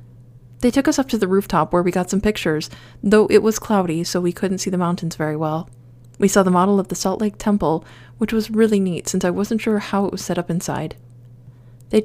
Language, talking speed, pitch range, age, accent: English, 240 wpm, 155-210 Hz, 30-49, American